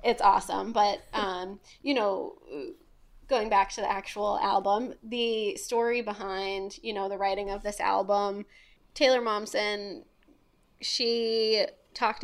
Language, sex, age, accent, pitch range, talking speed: English, female, 20-39, American, 200-230 Hz, 125 wpm